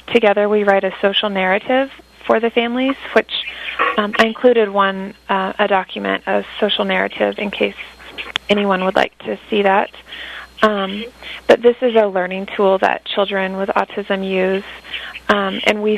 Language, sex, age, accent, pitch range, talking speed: English, female, 30-49, American, 195-225 Hz, 160 wpm